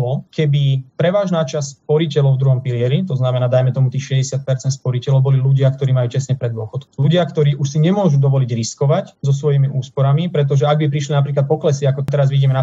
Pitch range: 135-155 Hz